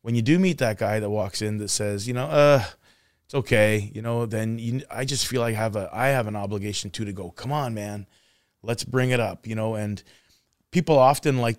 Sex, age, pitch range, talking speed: male, 20-39, 105-125 Hz, 235 wpm